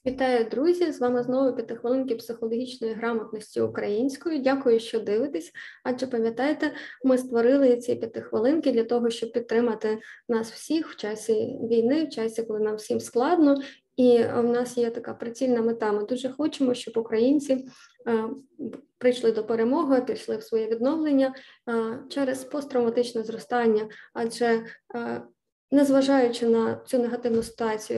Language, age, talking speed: Ukrainian, 20-39, 140 wpm